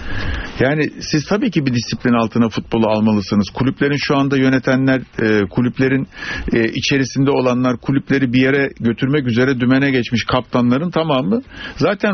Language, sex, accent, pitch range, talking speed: Turkish, male, native, 115-160 Hz, 130 wpm